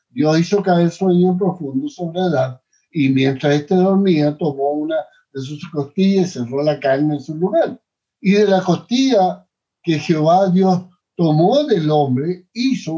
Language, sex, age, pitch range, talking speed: English, male, 60-79, 140-190 Hz, 160 wpm